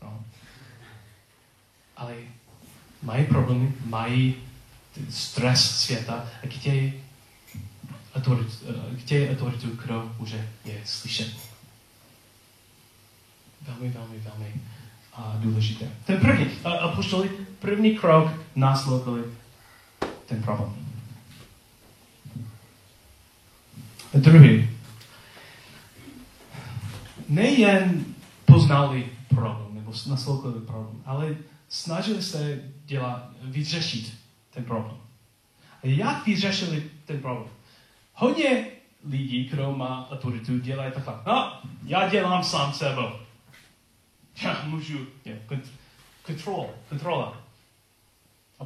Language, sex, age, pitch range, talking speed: Czech, male, 30-49, 115-140 Hz, 80 wpm